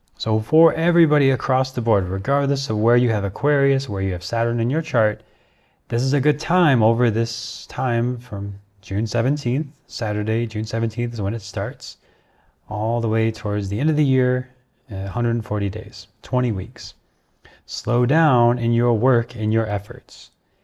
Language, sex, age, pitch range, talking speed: English, male, 30-49, 100-125 Hz, 170 wpm